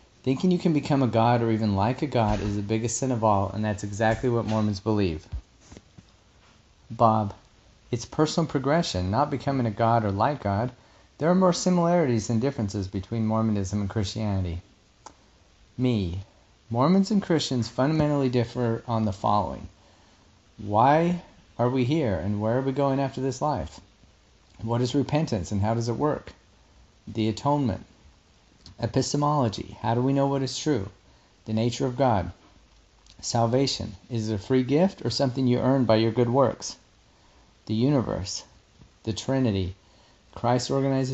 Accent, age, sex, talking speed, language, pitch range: American, 40-59, male, 155 wpm, English, 105-135 Hz